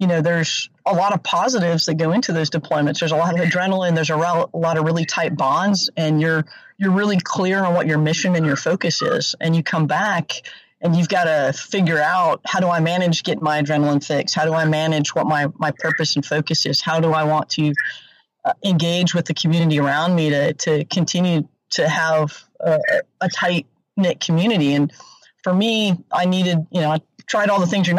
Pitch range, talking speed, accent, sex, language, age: 160-190 Hz, 215 wpm, American, female, English, 30-49